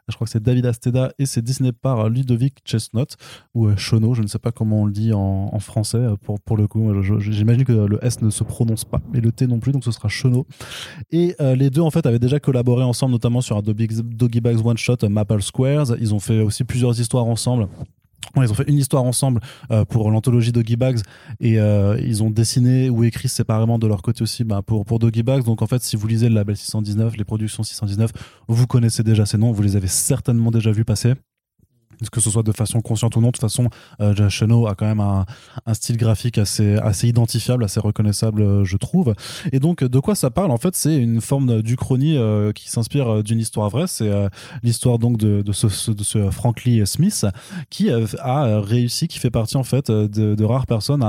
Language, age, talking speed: French, 20-39, 225 wpm